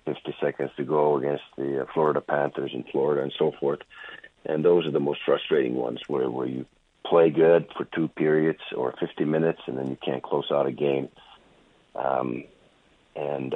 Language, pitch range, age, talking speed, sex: English, 70-80 Hz, 50-69, 180 wpm, male